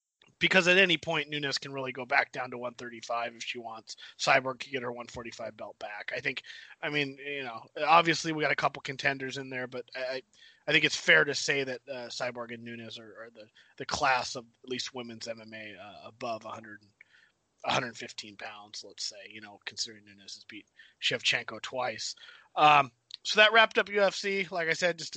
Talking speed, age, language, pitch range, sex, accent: 200 wpm, 30-49, English, 135-160 Hz, male, American